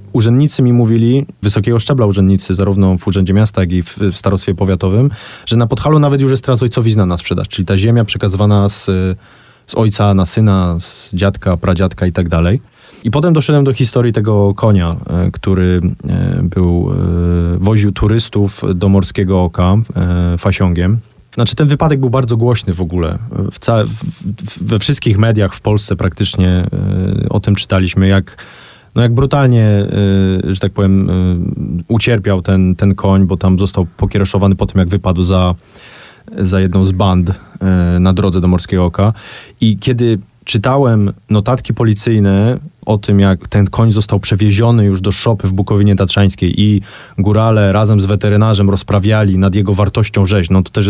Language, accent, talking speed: Polish, native, 155 wpm